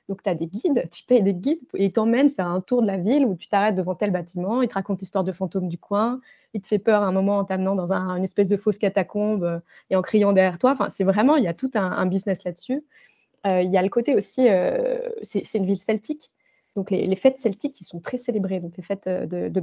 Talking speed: 270 wpm